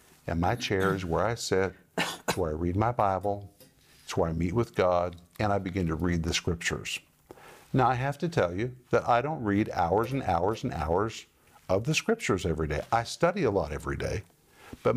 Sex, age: male, 50-69